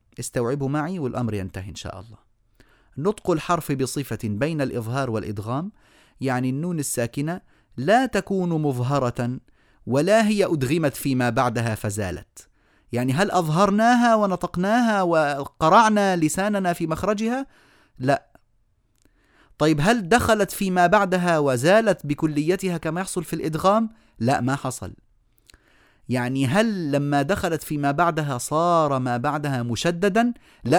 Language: Arabic